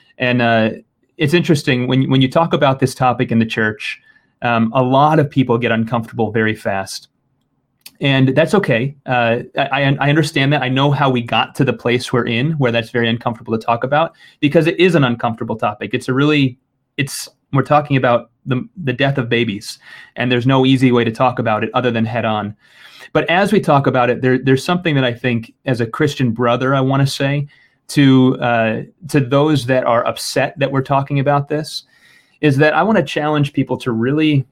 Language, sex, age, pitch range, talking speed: English, male, 30-49, 115-140 Hz, 205 wpm